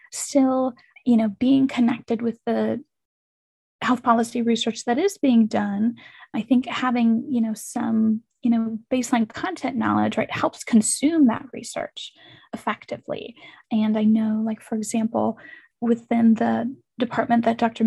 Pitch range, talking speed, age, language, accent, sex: 220-255 Hz, 140 wpm, 10-29, English, American, female